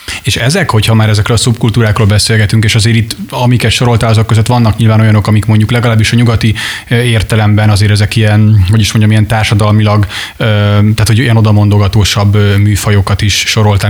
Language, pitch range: Hungarian, 100-115 Hz